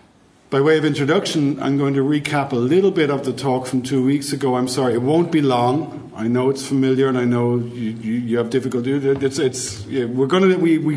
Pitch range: 125-150 Hz